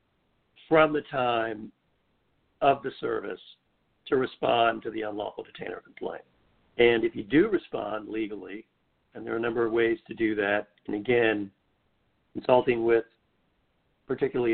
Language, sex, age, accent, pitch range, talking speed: English, male, 50-69, American, 110-125 Hz, 140 wpm